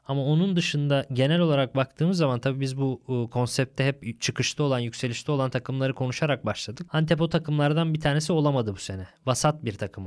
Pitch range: 130-165 Hz